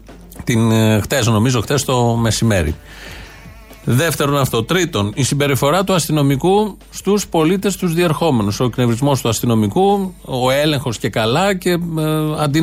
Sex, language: male, Greek